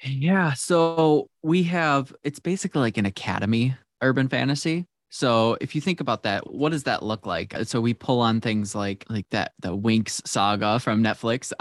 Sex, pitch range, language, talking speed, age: male, 105-130 Hz, English, 180 wpm, 20-39